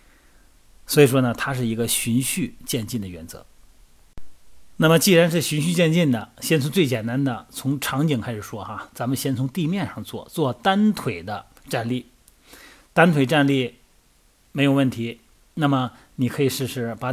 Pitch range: 115-145 Hz